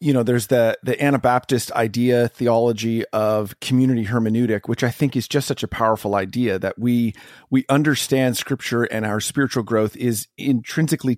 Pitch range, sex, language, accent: 110-150 Hz, male, English, American